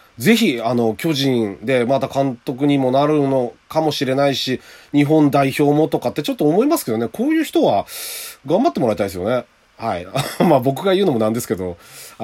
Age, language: 30-49, Japanese